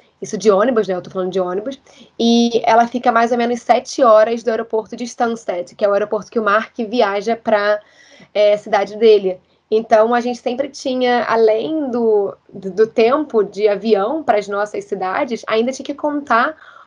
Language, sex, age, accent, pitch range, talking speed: Portuguese, female, 20-39, Brazilian, 210-245 Hz, 185 wpm